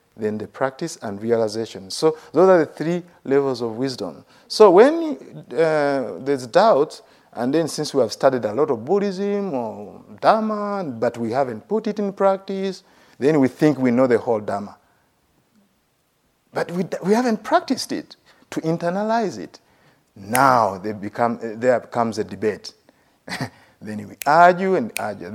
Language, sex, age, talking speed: English, male, 50-69, 155 wpm